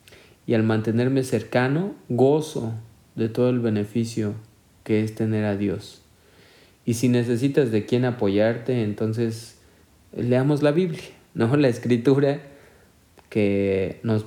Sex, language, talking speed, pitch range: male, Spanish, 120 wpm, 110-135 Hz